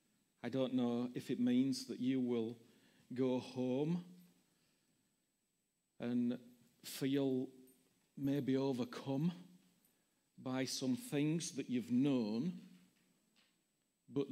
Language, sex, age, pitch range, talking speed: English, male, 40-59, 125-185 Hz, 90 wpm